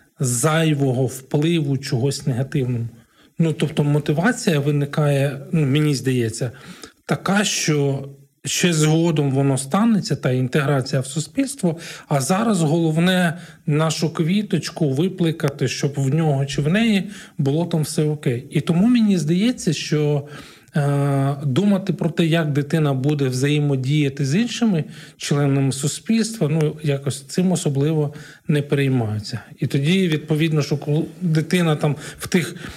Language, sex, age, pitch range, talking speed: Ukrainian, male, 40-59, 140-165 Hz, 125 wpm